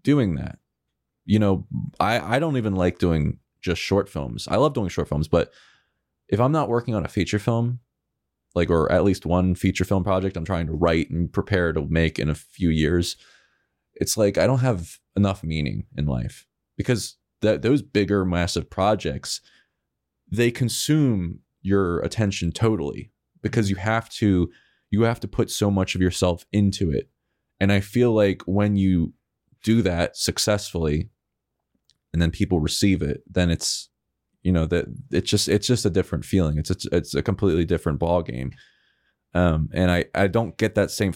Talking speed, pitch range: 180 wpm, 80-105 Hz